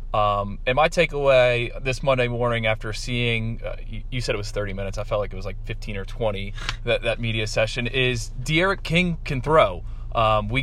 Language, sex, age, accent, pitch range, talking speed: English, male, 20-39, American, 110-130 Hz, 210 wpm